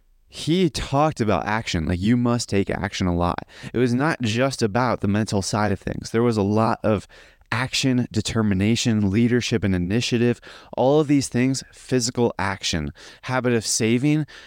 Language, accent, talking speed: English, American, 165 wpm